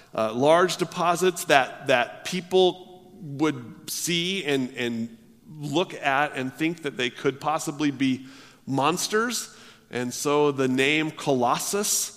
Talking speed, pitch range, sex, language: 125 wpm, 115-150 Hz, male, English